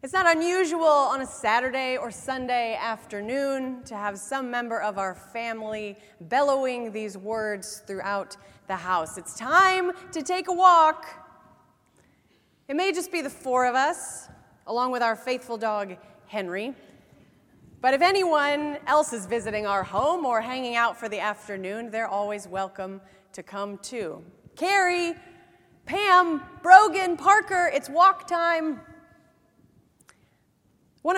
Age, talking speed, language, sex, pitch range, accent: 30-49, 135 wpm, English, female, 205-285 Hz, American